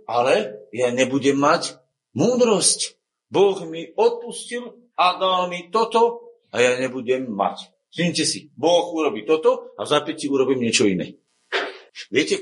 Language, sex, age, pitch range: Slovak, male, 50-69, 115-185 Hz